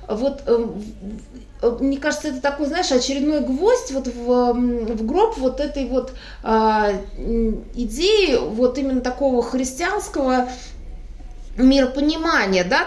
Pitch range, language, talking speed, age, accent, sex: 235-295 Hz, Russian, 105 wpm, 20-39, native, female